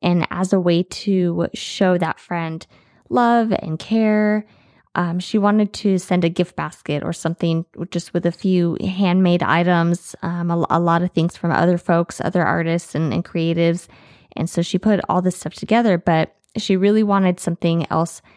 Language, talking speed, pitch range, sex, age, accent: English, 180 wpm, 165-185 Hz, female, 20-39, American